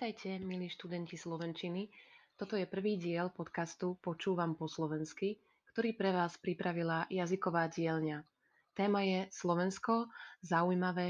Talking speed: 120 wpm